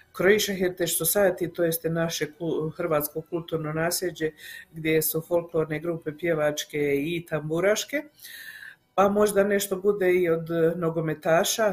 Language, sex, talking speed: Croatian, female, 120 wpm